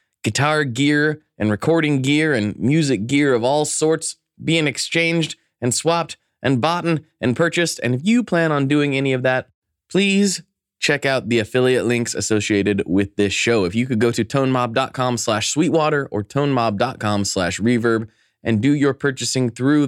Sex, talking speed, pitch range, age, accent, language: male, 165 wpm, 105-145 Hz, 20-39, American, English